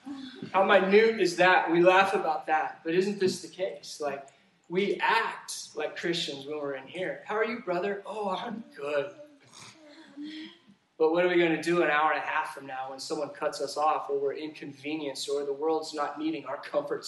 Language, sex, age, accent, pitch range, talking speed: English, male, 20-39, American, 170-235 Hz, 205 wpm